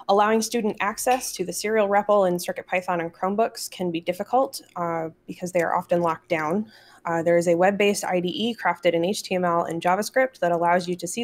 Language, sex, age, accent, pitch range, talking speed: English, female, 20-39, American, 170-200 Hz, 205 wpm